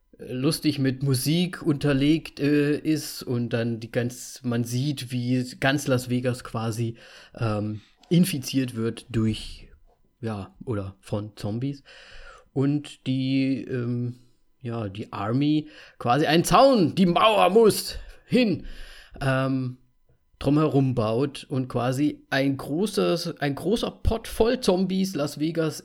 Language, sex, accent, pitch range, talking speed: German, male, German, 120-155 Hz, 125 wpm